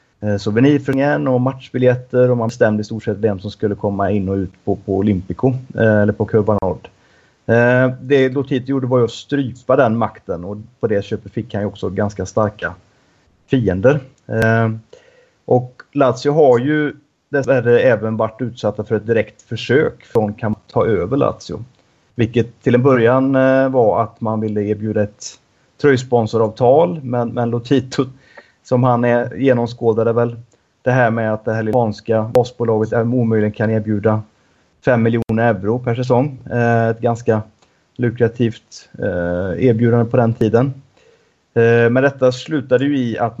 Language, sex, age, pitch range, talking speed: Swedish, male, 30-49, 110-125 Hz, 155 wpm